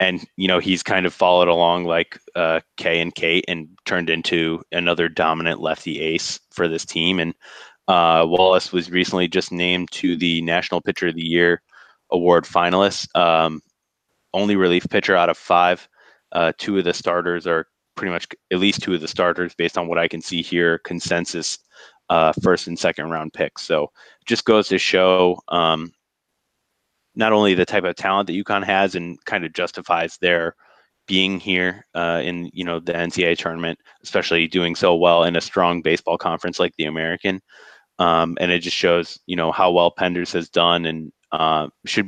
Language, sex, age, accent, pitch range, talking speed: English, male, 20-39, American, 85-90 Hz, 185 wpm